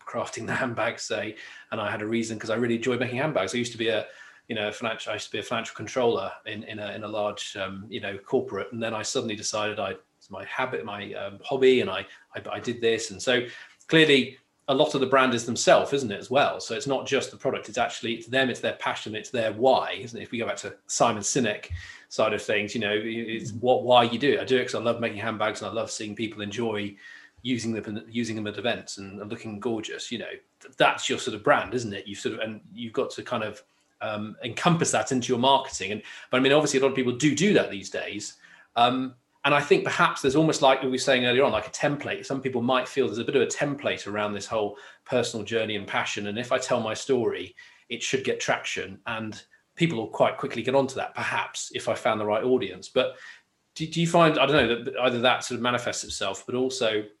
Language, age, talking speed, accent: English, 30-49, 255 wpm, British